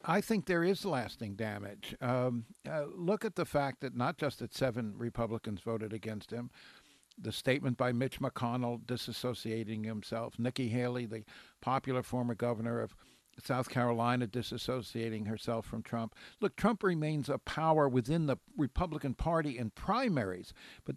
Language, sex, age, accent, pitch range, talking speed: English, male, 60-79, American, 120-155 Hz, 150 wpm